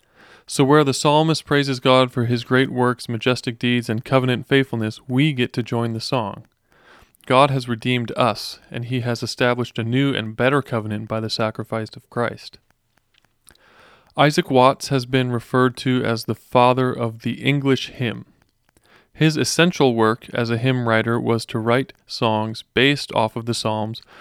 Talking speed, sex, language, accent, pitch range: 170 wpm, male, English, American, 115-135 Hz